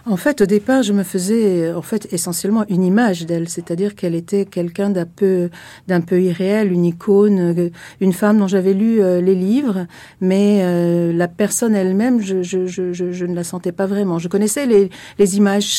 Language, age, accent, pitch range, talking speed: French, 60-79, French, 180-210 Hz, 200 wpm